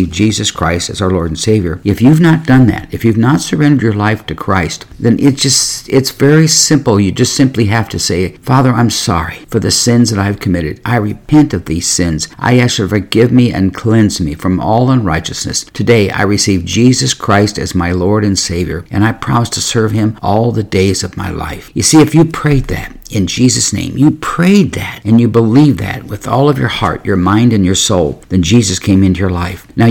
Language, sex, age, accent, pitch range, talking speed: English, male, 50-69, American, 95-125 Hz, 225 wpm